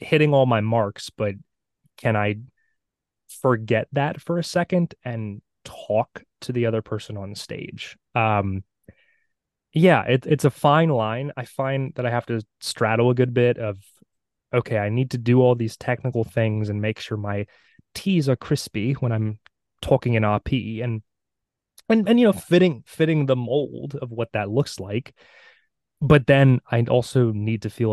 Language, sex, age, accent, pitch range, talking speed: English, male, 20-39, American, 105-135 Hz, 170 wpm